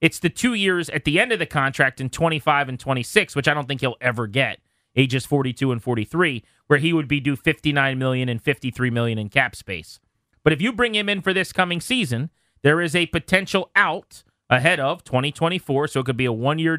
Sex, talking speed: male, 220 wpm